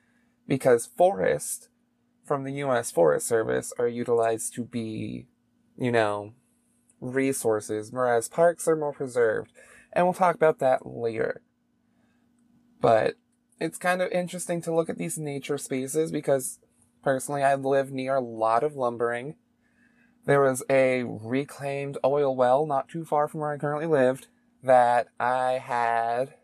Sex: male